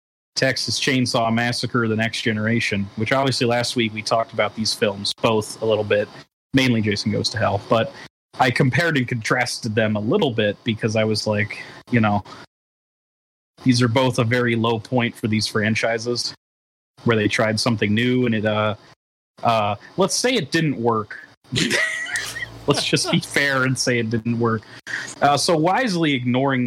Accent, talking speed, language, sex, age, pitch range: American, 170 wpm, English, male, 30-49, 110-135 Hz